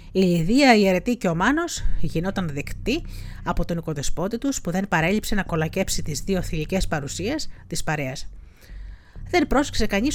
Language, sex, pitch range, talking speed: Greek, female, 145-210 Hz, 160 wpm